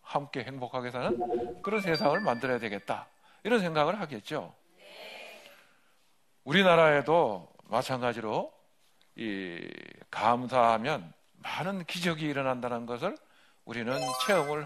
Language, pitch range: Korean, 120-170 Hz